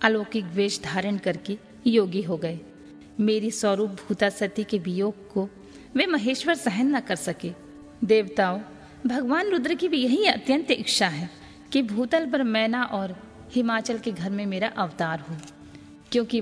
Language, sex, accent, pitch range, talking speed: Hindi, female, native, 185-245 Hz, 35 wpm